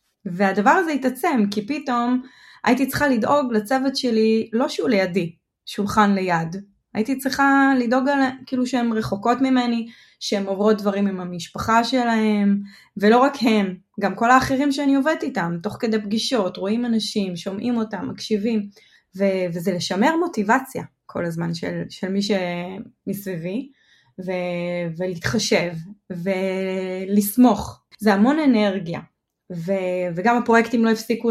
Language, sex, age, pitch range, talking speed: Hebrew, female, 20-39, 195-265 Hz, 130 wpm